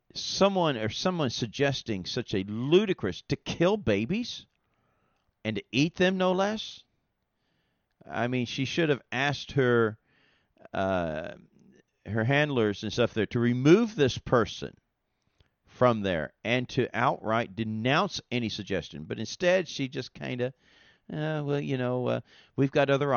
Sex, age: male, 50-69